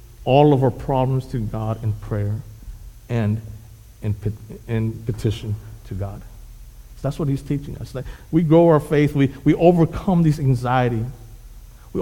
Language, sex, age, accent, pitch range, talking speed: English, male, 50-69, American, 115-145 Hz, 145 wpm